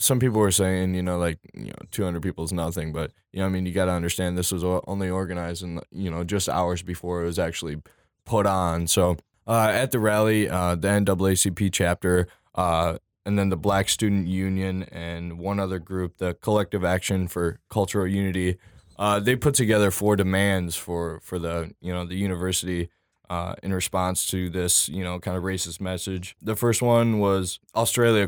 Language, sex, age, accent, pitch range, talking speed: English, male, 10-29, American, 90-100 Hz, 195 wpm